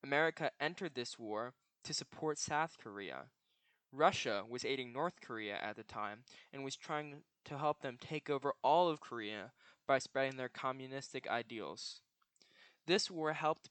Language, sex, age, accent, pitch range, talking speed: English, male, 10-29, American, 125-150 Hz, 155 wpm